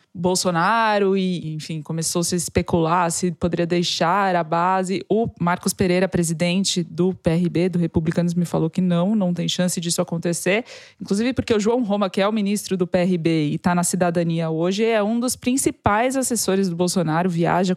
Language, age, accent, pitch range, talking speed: Portuguese, 20-39, Brazilian, 180-210 Hz, 180 wpm